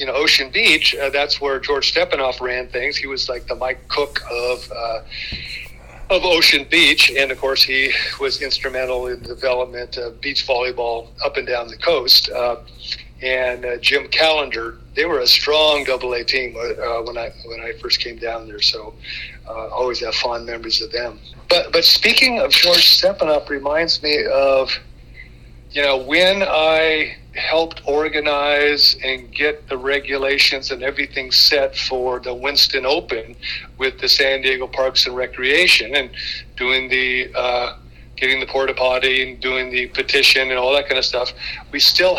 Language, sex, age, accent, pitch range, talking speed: English, male, 50-69, American, 125-150 Hz, 170 wpm